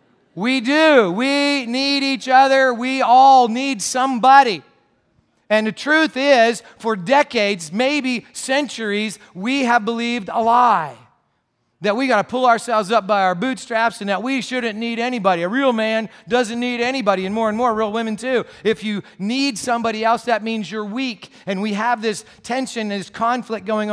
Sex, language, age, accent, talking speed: male, English, 40-59, American, 175 wpm